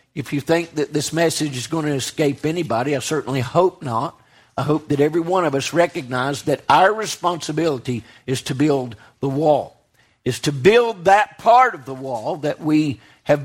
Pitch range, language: 155-220 Hz, English